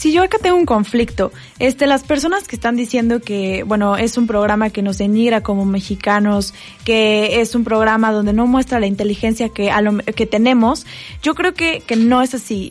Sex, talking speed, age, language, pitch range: female, 210 wpm, 20-39, Spanish, 215-255 Hz